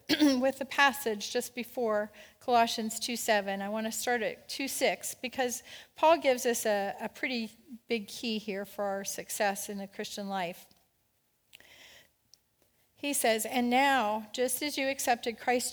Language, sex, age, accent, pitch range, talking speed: English, female, 40-59, American, 210-265 Hz, 150 wpm